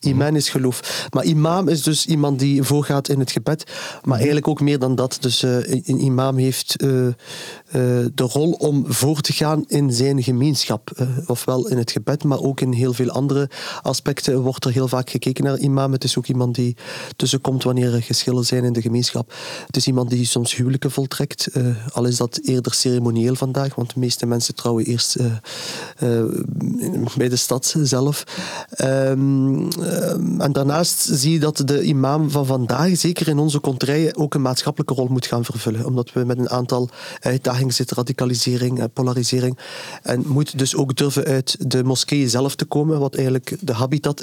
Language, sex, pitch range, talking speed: Dutch, male, 125-145 Hz, 175 wpm